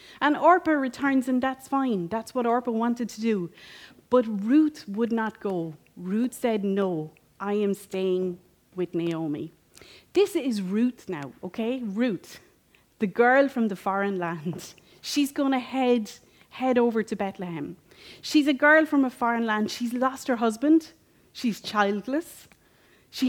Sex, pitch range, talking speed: female, 195-275 Hz, 150 wpm